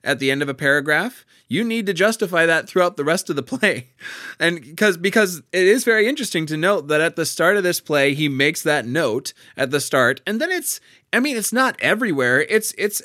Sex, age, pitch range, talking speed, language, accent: male, 20-39, 125-170 Hz, 230 wpm, English, American